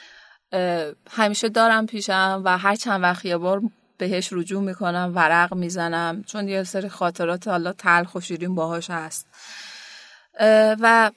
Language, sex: Persian, female